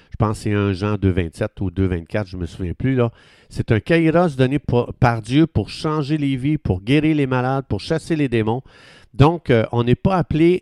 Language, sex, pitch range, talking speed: French, male, 105-135 Hz, 205 wpm